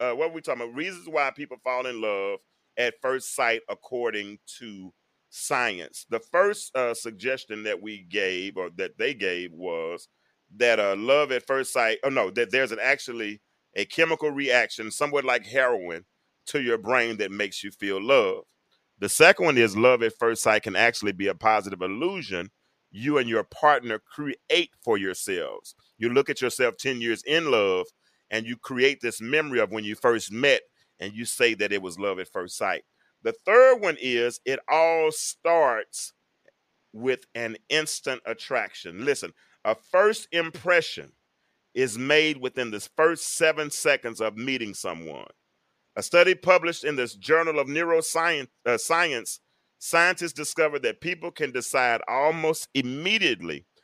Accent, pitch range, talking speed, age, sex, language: American, 115-170 Hz, 165 wpm, 30-49, male, English